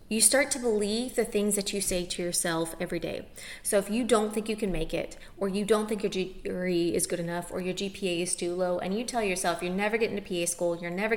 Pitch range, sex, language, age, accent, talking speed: 185-240 Hz, female, English, 30-49, American, 265 wpm